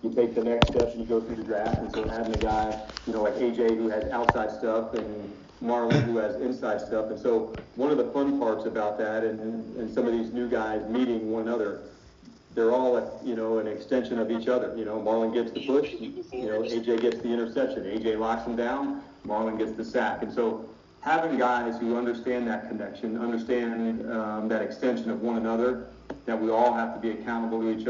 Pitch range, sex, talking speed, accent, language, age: 110-120 Hz, male, 215 wpm, American, English, 40-59